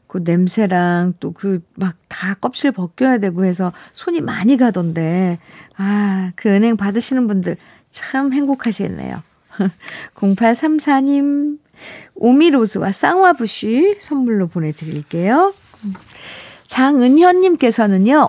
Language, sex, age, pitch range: Korean, female, 50-69, 185-265 Hz